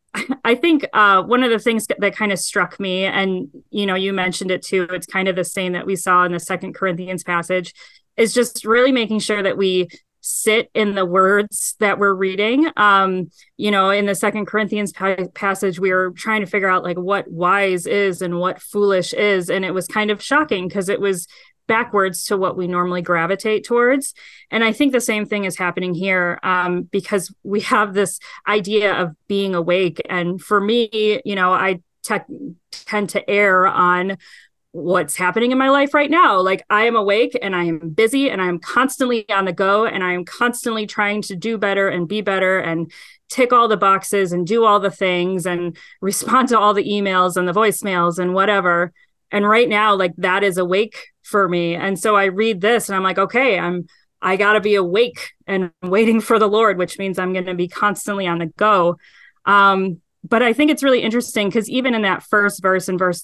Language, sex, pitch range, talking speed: English, female, 185-215 Hz, 210 wpm